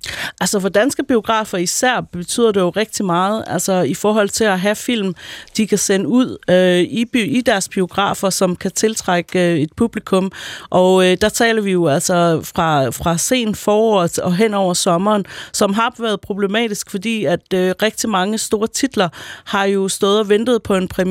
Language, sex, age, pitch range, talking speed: Danish, female, 30-49, 185-220 Hz, 180 wpm